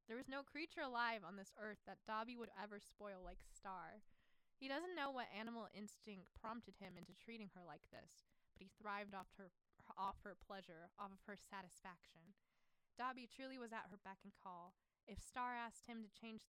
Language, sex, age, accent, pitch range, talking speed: English, female, 20-39, American, 190-230 Hz, 195 wpm